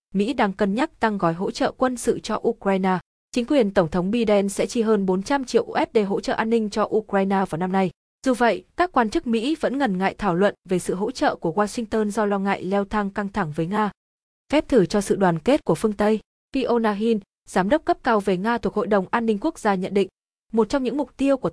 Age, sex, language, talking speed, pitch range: 20-39, female, Vietnamese, 250 wpm, 190-235 Hz